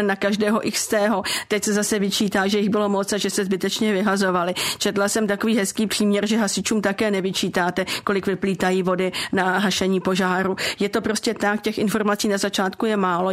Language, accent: Czech, native